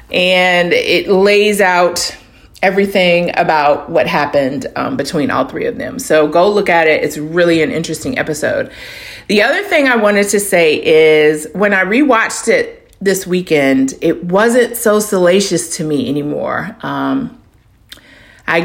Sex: female